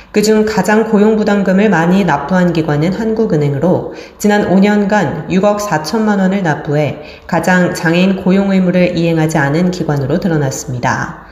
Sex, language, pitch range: female, Korean, 170-205 Hz